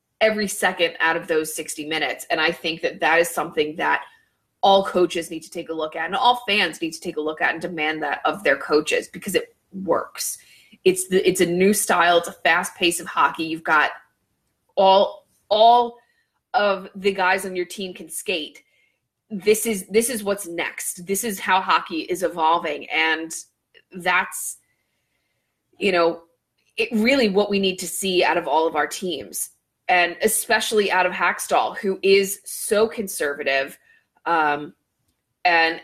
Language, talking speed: English, 175 wpm